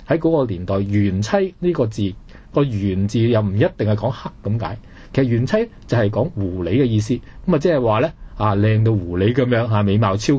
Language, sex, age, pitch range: Chinese, male, 20-39, 100-135 Hz